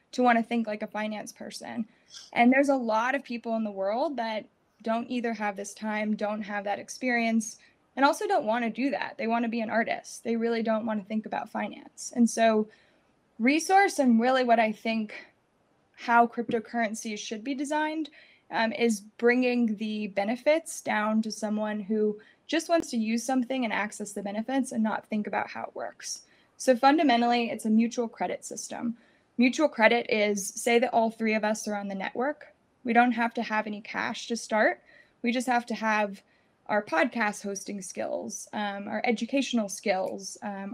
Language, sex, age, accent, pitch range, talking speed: English, female, 20-39, American, 215-250 Hz, 190 wpm